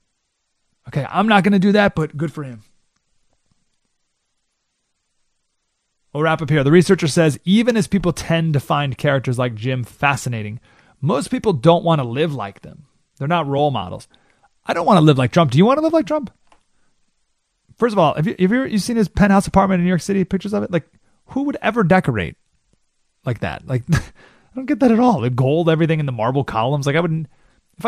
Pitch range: 130-195 Hz